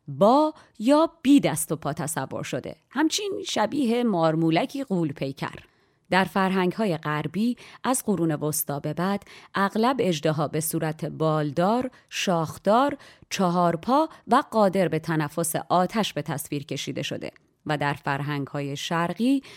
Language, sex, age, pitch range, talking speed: Persian, female, 30-49, 155-215 Hz, 125 wpm